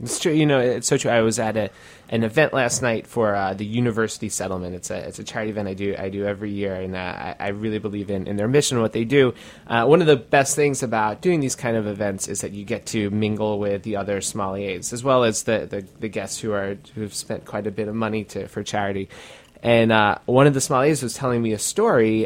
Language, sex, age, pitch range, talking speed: English, male, 20-39, 100-125 Hz, 265 wpm